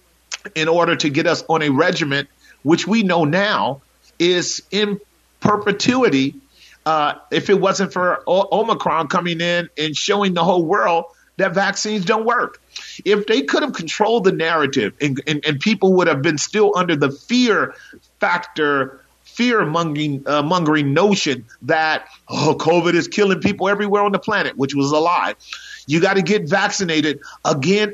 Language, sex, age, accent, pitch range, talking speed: English, male, 40-59, American, 155-200 Hz, 165 wpm